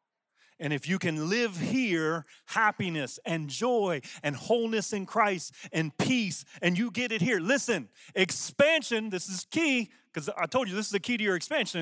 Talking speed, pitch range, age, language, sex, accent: 185 wpm, 160-210 Hz, 30-49, English, male, American